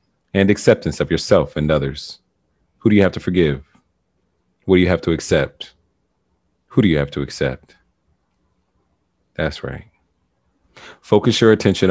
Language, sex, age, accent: English, male, 40-59, American